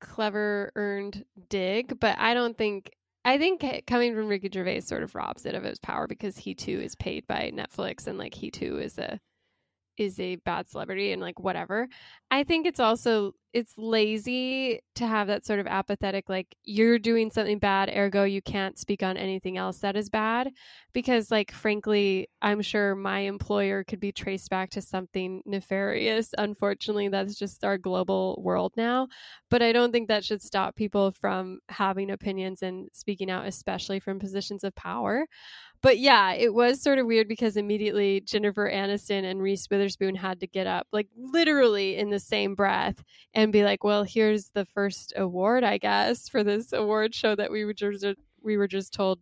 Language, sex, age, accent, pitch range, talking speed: English, female, 10-29, American, 195-225 Hz, 185 wpm